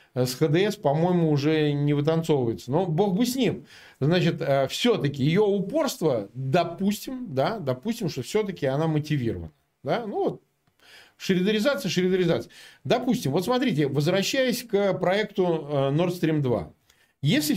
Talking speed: 125 wpm